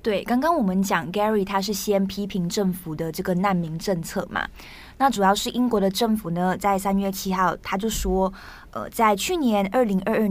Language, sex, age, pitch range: Chinese, female, 20-39, 185-220 Hz